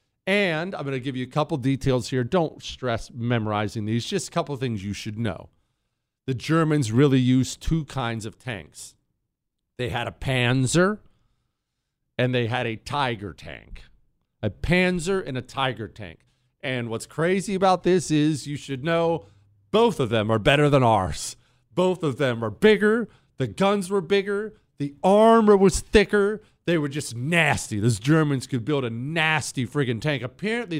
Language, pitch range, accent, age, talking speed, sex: English, 120-165 Hz, American, 40-59, 175 wpm, male